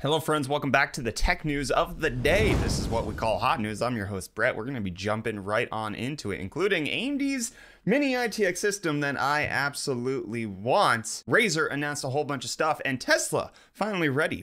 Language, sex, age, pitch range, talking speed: English, male, 30-49, 115-160 Hz, 210 wpm